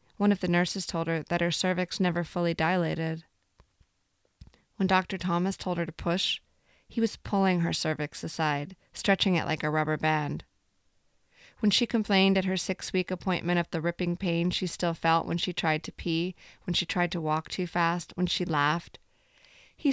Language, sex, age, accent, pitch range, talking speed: English, female, 30-49, American, 165-195 Hz, 185 wpm